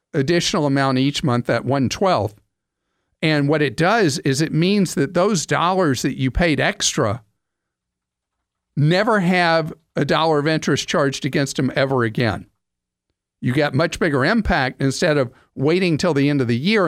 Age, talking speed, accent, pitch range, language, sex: 50-69, 160 wpm, American, 125-165 Hz, English, male